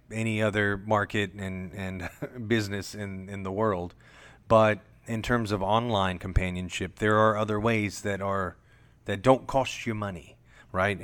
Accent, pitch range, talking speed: American, 95-115 Hz, 150 wpm